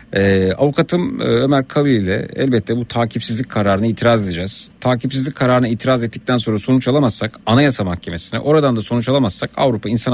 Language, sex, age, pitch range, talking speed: Turkish, male, 50-69, 105-140 Hz, 155 wpm